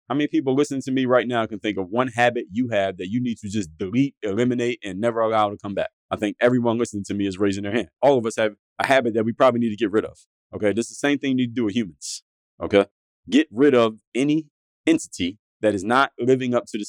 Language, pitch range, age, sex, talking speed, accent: English, 105-130 Hz, 30-49, male, 270 wpm, American